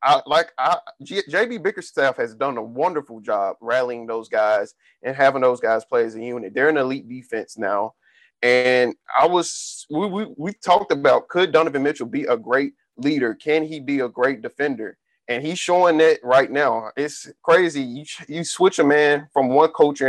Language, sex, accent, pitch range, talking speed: English, male, American, 130-180 Hz, 195 wpm